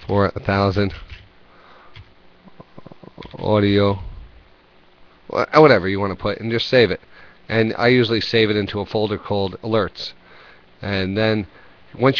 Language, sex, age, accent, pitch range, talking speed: English, male, 40-59, American, 95-115 Hz, 130 wpm